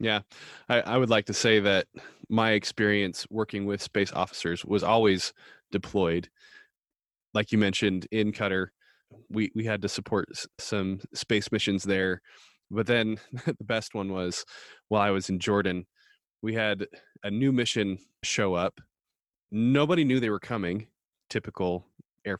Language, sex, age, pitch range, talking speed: English, male, 20-39, 100-125 Hz, 150 wpm